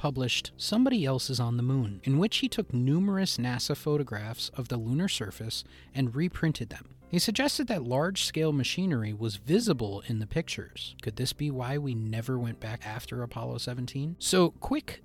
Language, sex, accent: English, male, American